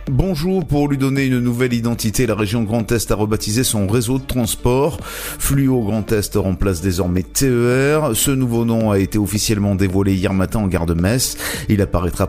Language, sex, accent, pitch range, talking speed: French, male, French, 95-120 Hz, 185 wpm